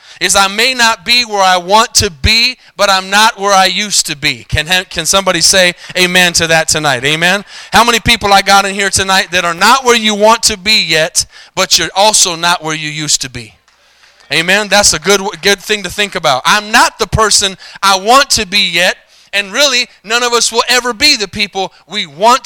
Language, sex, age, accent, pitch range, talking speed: English, male, 30-49, American, 170-220 Hz, 220 wpm